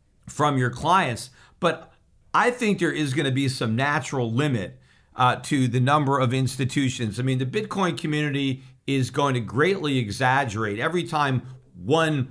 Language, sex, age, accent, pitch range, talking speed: English, male, 50-69, American, 125-170 Hz, 160 wpm